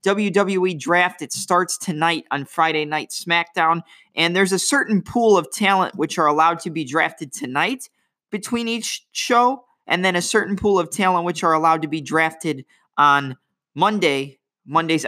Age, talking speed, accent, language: 20-39, 165 wpm, American, English